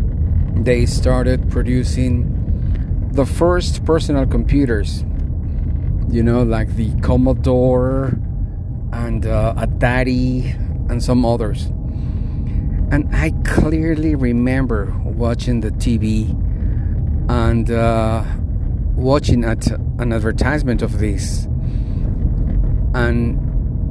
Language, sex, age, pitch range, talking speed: English, male, 40-59, 105-120 Hz, 85 wpm